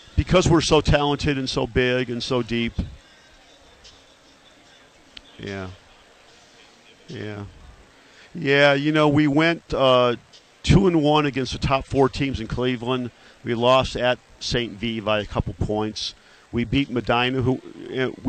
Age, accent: 50-69, American